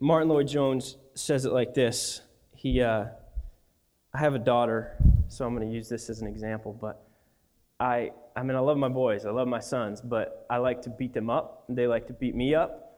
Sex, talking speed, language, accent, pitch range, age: male, 215 wpm, English, American, 115-135 Hz, 20-39